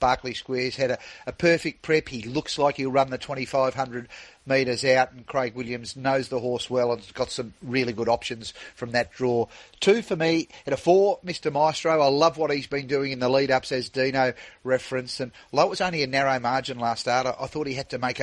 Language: English